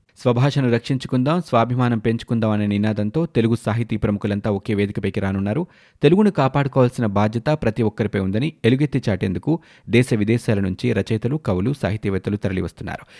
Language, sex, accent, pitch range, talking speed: Telugu, male, native, 110-145 Hz, 125 wpm